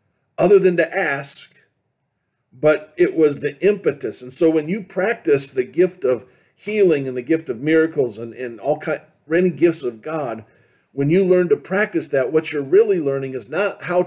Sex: male